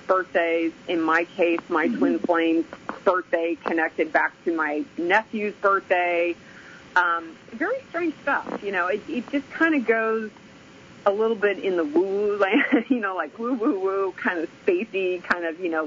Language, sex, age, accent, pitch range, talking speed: English, female, 30-49, American, 165-210 Hz, 180 wpm